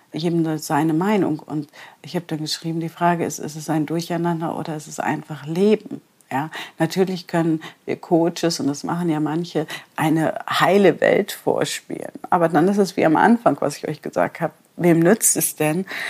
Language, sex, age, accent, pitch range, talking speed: German, female, 50-69, German, 155-180 Hz, 185 wpm